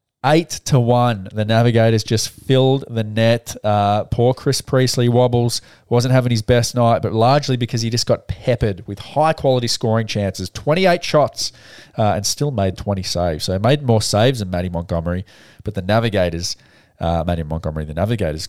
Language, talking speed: English, 180 wpm